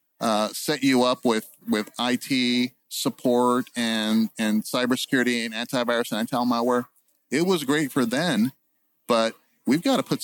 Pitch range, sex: 120-155 Hz, male